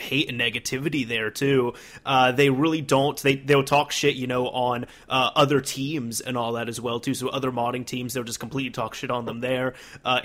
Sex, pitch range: male, 125-155 Hz